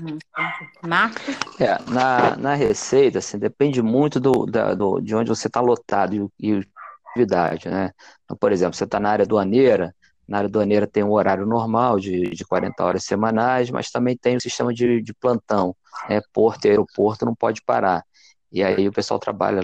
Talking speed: 175 wpm